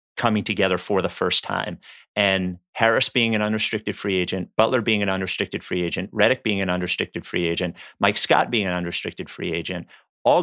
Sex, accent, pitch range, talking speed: male, American, 95-115 Hz, 190 wpm